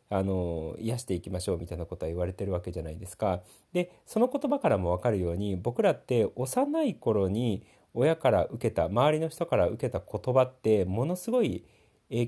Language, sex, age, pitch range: Japanese, male, 40-59, 100-170 Hz